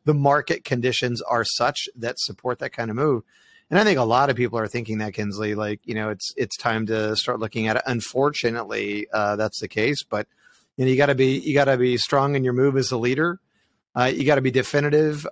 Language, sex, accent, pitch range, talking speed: English, male, American, 120-150 Hz, 225 wpm